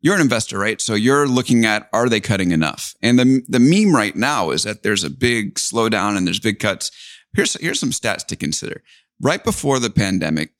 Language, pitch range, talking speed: English, 95-130 Hz, 215 wpm